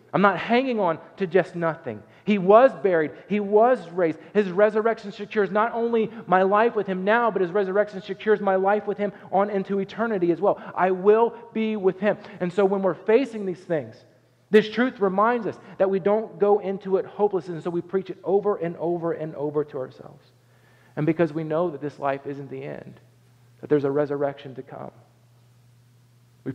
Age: 40-59